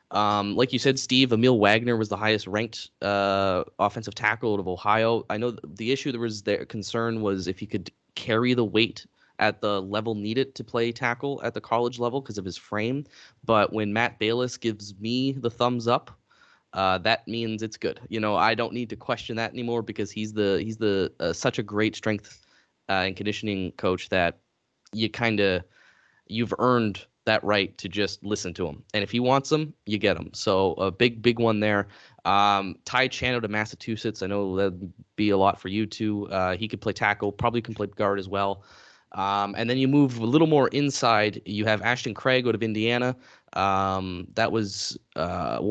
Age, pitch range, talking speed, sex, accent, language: 10-29, 100-120 Hz, 205 wpm, male, American, English